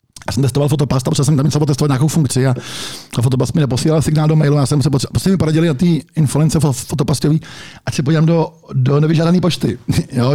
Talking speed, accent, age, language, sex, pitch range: 215 wpm, native, 50-69, Czech, male, 120-150 Hz